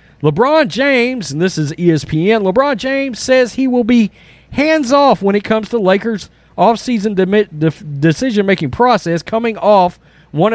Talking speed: 150 wpm